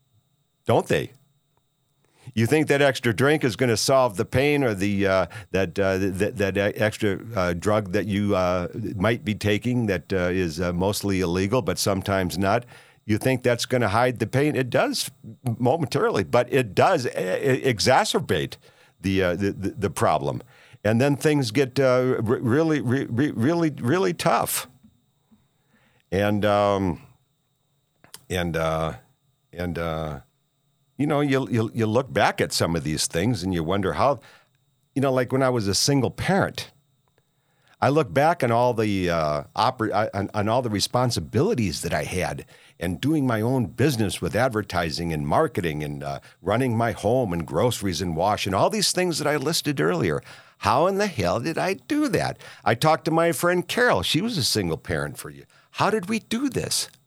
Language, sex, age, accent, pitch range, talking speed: English, male, 50-69, American, 100-140 Hz, 180 wpm